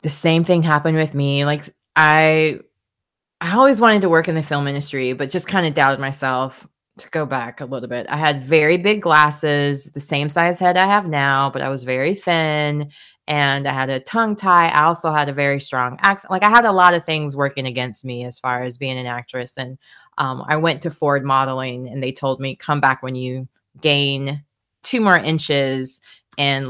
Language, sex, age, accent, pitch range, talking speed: English, female, 20-39, American, 135-170 Hz, 215 wpm